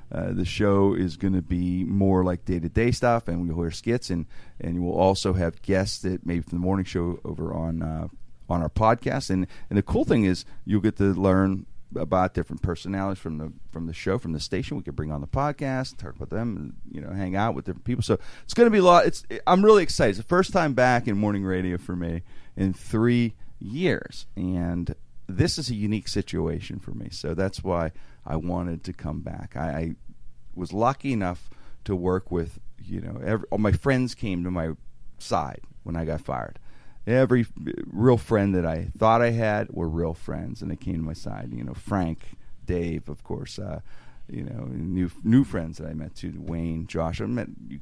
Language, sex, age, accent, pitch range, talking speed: English, male, 40-59, American, 85-110 Hz, 215 wpm